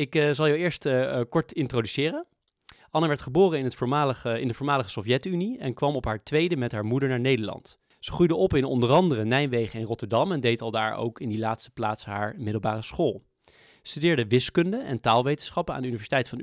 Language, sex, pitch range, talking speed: Dutch, male, 115-145 Hz, 205 wpm